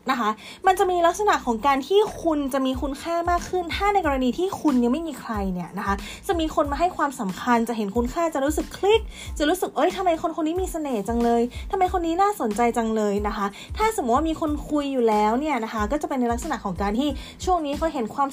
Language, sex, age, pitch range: Thai, female, 20-39, 225-330 Hz